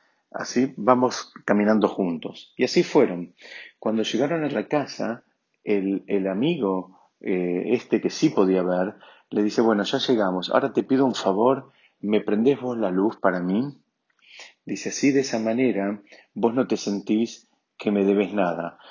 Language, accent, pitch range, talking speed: Spanish, Argentinian, 95-125 Hz, 160 wpm